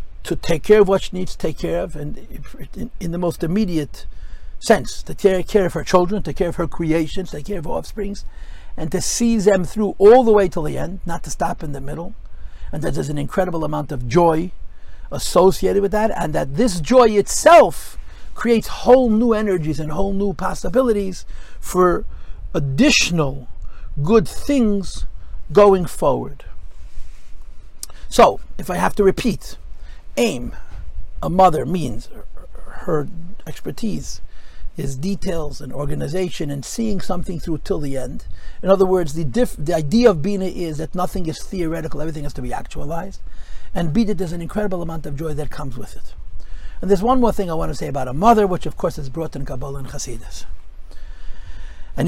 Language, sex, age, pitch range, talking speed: English, male, 60-79, 130-195 Hz, 180 wpm